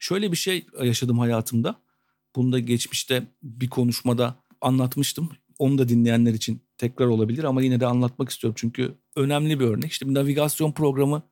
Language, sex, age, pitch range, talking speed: Turkish, male, 50-69, 120-155 Hz, 160 wpm